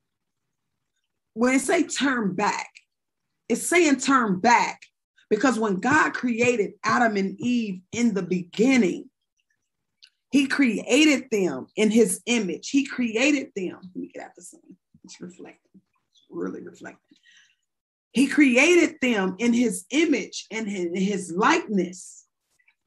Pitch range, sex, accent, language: 205-275 Hz, female, American, English